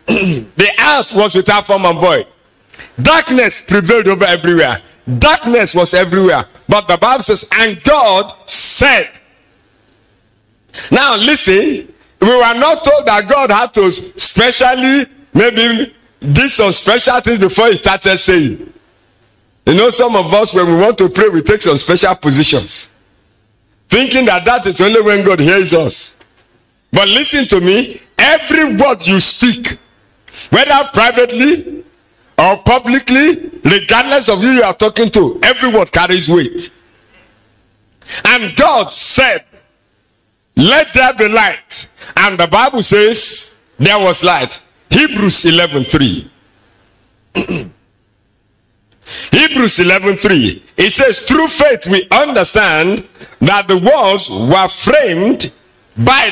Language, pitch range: English, 180-260 Hz